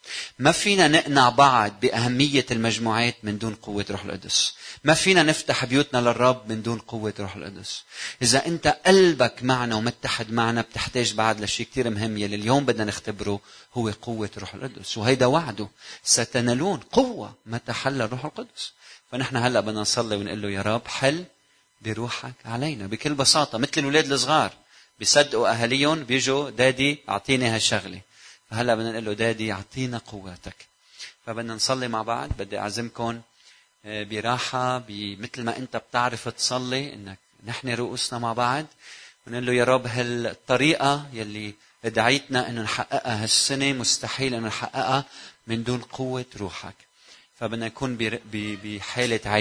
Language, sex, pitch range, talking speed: Arabic, male, 110-130 Hz, 140 wpm